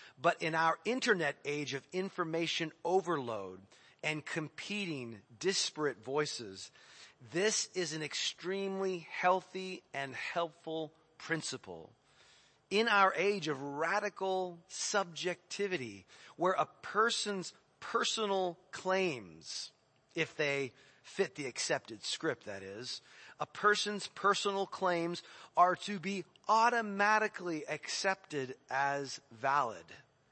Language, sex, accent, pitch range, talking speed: English, male, American, 135-185 Hz, 100 wpm